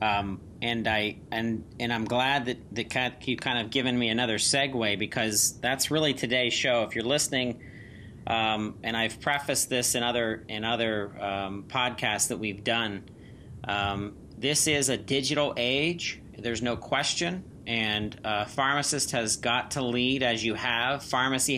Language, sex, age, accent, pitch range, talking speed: English, male, 40-59, American, 110-130 Hz, 160 wpm